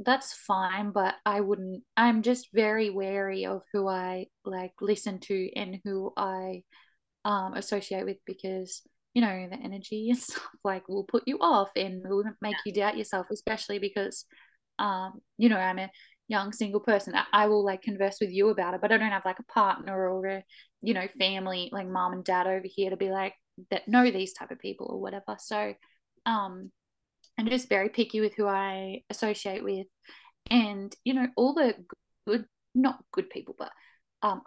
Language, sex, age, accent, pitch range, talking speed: English, female, 10-29, Australian, 195-225 Hz, 190 wpm